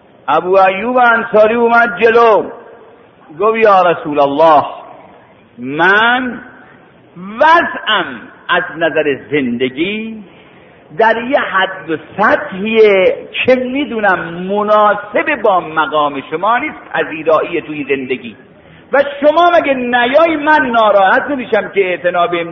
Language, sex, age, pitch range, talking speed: Persian, male, 50-69, 170-280 Hz, 100 wpm